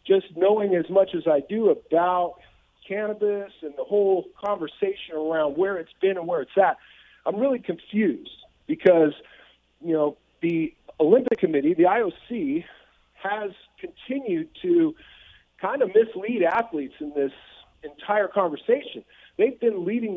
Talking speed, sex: 135 wpm, male